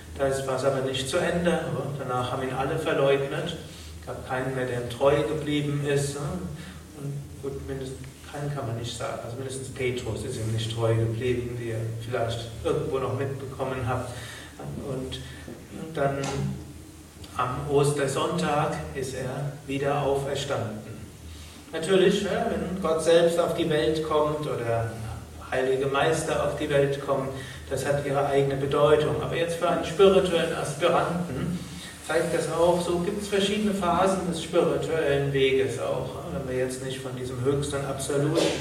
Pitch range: 130-155 Hz